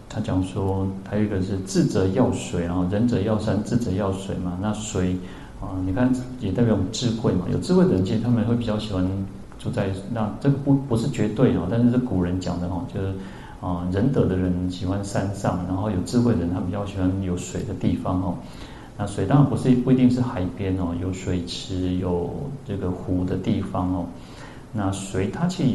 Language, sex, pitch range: Chinese, male, 90-120 Hz